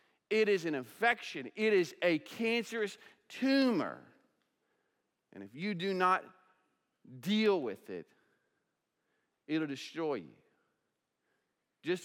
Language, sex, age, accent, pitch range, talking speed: English, male, 40-59, American, 130-200 Hz, 110 wpm